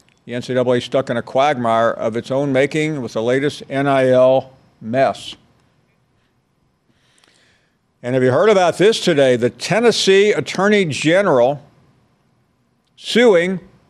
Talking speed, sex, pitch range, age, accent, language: 115 wpm, male, 125-160 Hz, 50-69, American, English